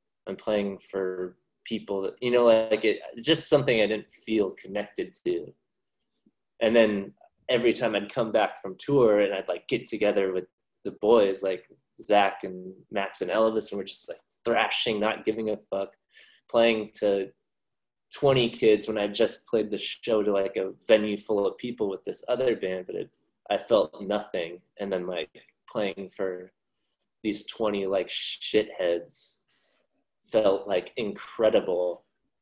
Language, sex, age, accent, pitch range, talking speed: English, male, 20-39, American, 100-120 Hz, 155 wpm